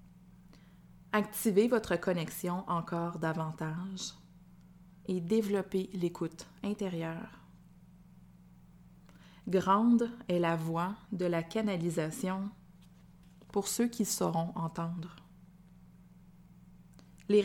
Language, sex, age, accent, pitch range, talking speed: French, female, 30-49, Canadian, 175-200 Hz, 75 wpm